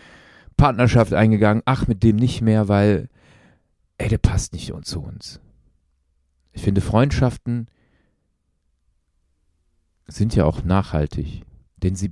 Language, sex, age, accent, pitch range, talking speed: German, male, 40-59, German, 80-110 Hz, 115 wpm